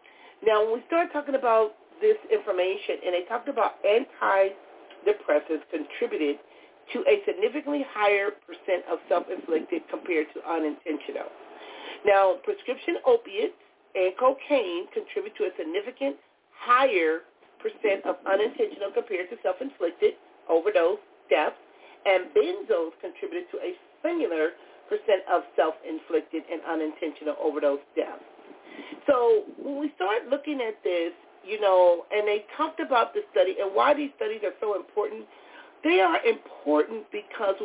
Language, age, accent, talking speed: English, 40-59, American, 130 wpm